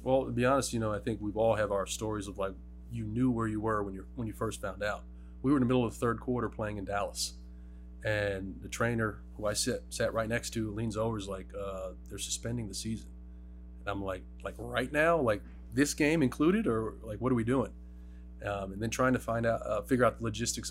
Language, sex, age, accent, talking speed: English, male, 30-49, American, 250 wpm